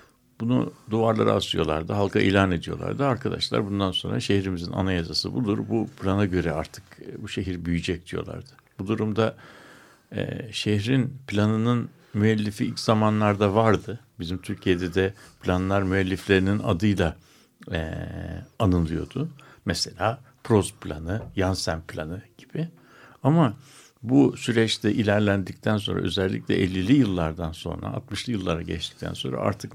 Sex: male